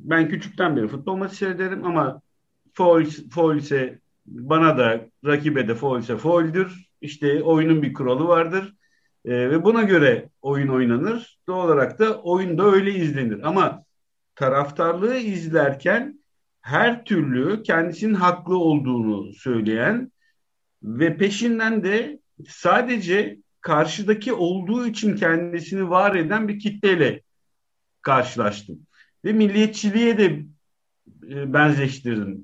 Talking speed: 105 wpm